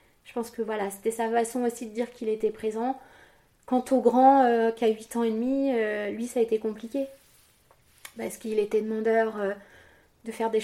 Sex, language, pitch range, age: female, French, 215-250 Hz, 30-49